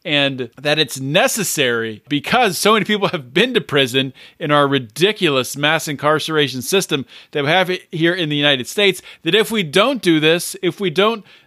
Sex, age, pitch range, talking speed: male, 40-59, 145-180 Hz, 185 wpm